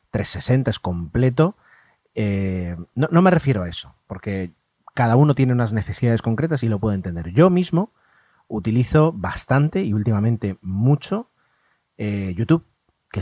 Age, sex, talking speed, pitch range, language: 30-49, male, 140 wpm, 95-135 Hz, Spanish